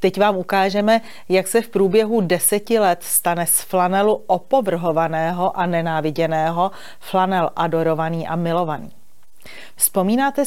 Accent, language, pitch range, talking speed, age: native, Czech, 165-200 Hz, 115 wpm, 30-49